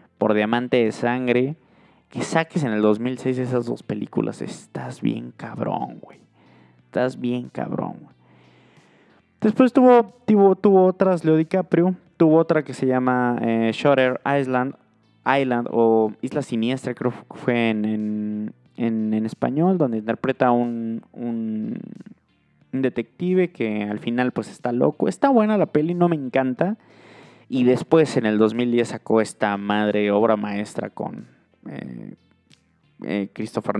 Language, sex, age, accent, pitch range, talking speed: Spanish, male, 20-39, Mexican, 110-135 Hz, 140 wpm